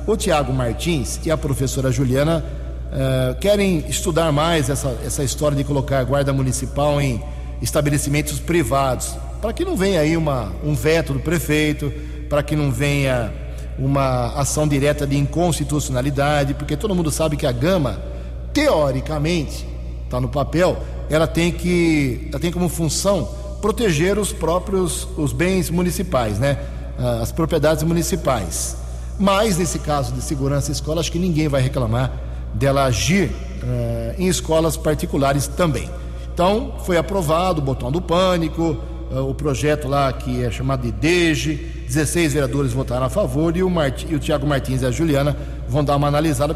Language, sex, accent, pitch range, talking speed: English, male, Brazilian, 130-160 Hz, 150 wpm